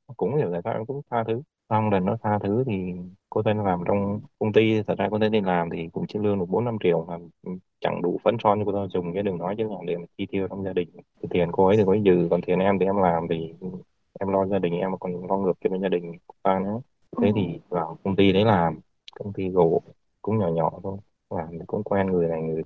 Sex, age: male, 20-39